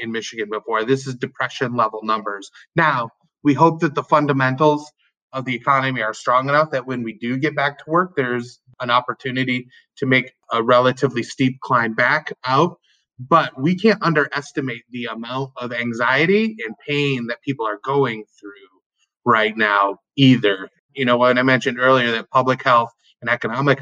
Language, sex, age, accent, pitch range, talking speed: English, male, 30-49, American, 115-140 Hz, 170 wpm